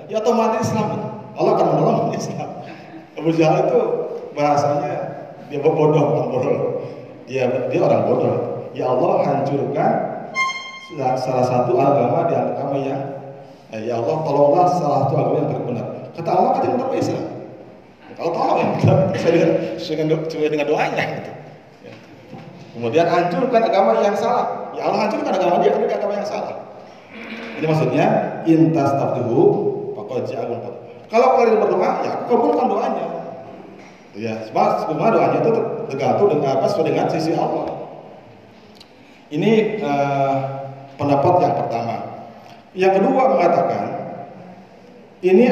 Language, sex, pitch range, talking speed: Malay, male, 145-235 Hz, 115 wpm